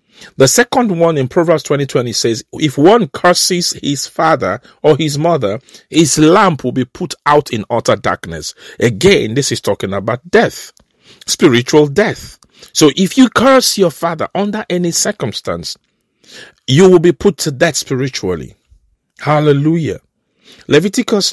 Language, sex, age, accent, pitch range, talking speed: English, male, 50-69, Nigerian, 130-180 Hz, 145 wpm